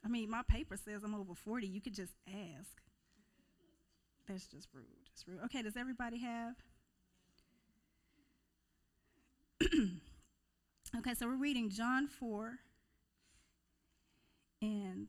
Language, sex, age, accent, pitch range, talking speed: English, female, 30-49, American, 205-260 Hz, 105 wpm